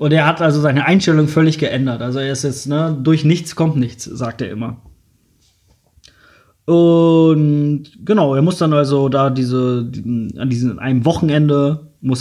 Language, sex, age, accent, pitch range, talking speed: German, male, 20-39, German, 125-160 Hz, 160 wpm